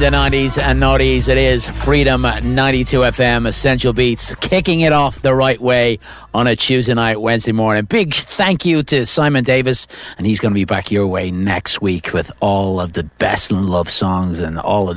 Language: English